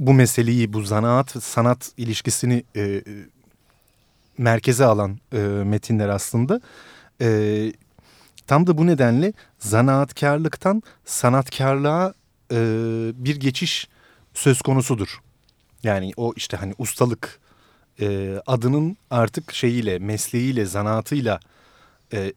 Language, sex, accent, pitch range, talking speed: Turkish, male, native, 110-135 Hz, 95 wpm